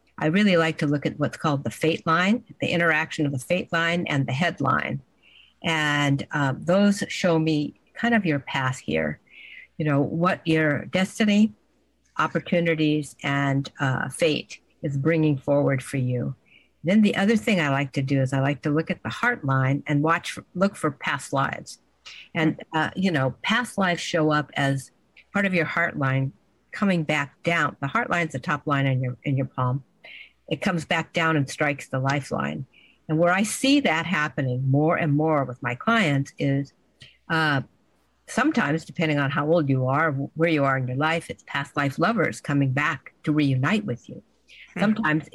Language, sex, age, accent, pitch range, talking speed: English, female, 50-69, American, 135-165 Hz, 190 wpm